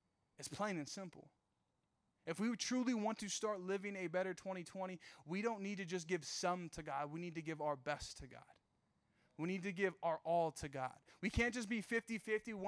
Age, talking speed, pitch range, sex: 20-39, 210 wpm, 170-205 Hz, male